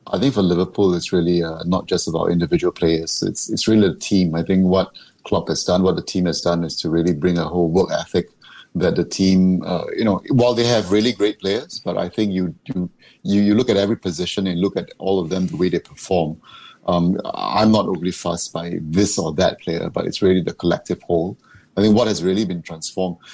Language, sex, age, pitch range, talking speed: English, male, 30-49, 90-110 Hz, 240 wpm